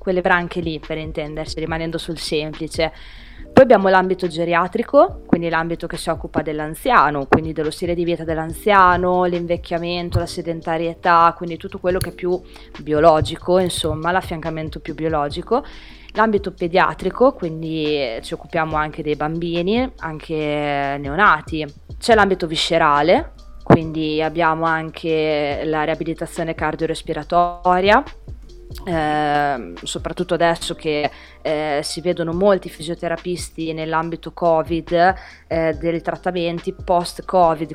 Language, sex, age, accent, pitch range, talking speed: Italian, female, 20-39, native, 155-175 Hz, 115 wpm